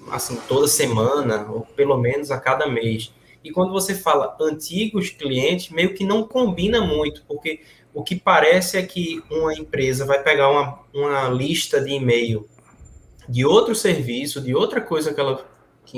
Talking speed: 165 wpm